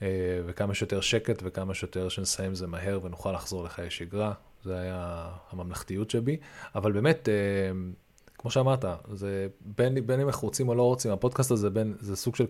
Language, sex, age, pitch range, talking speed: Hebrew, male, 20-39, 100-125 Hz, 170 wpm